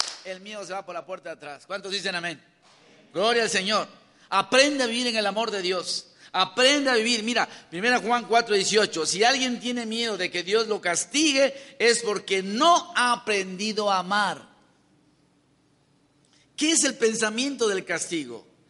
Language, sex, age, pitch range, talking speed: Spanish, male, 50-69, 180-245 Hz, 170 wpm